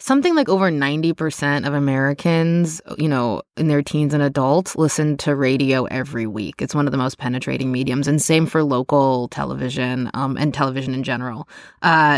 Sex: female